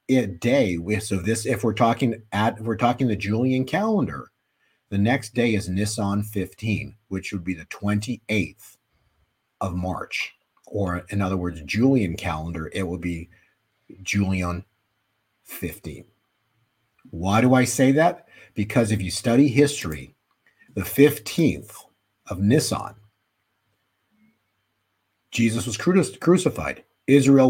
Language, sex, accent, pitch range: English, male, American, 95-120 Hz